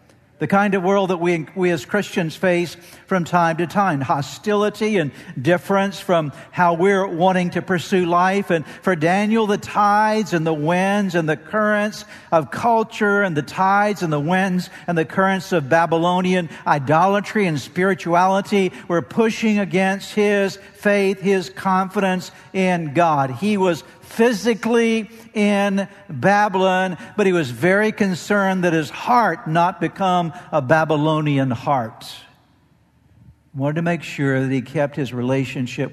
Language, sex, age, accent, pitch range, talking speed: English, male, 60-79, American, 140-185 Hz, 145 wpm